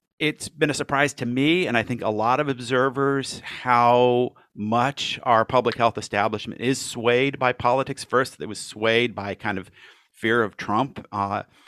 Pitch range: 100-130 Hz